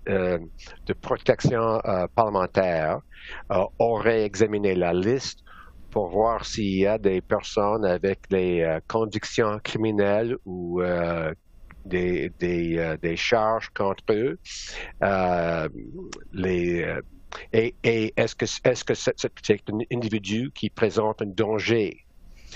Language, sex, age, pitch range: French, male, 60-79, 95-115 Hz